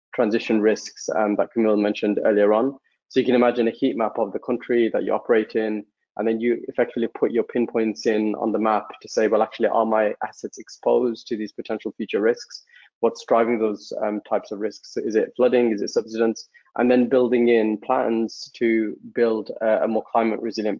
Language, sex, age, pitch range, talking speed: English, male, 20-39, 105-125 Hz, 205 wpm